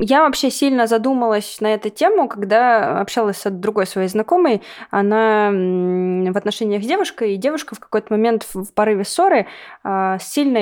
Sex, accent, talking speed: female, native, 155 wpm